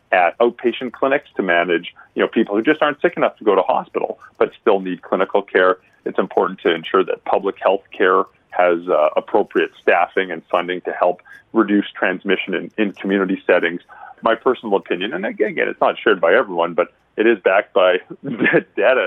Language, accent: Korean, American